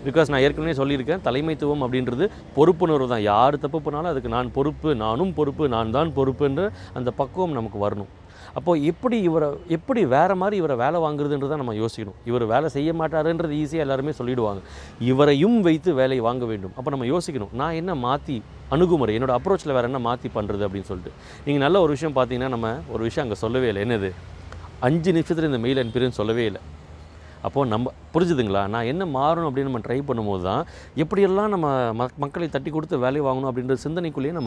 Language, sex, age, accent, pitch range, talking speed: Tamil, male, 30-49, native, 110-150 Hz, 175 wpm